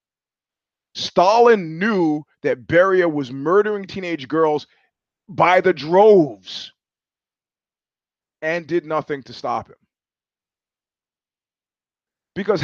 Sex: male